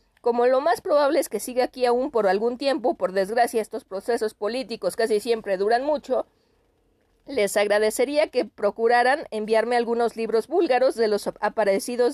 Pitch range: 215-265 Hz